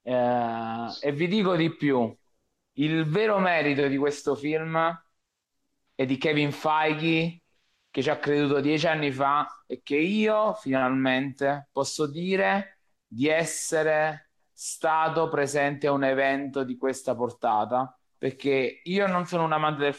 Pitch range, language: 130-165 Hz, Italian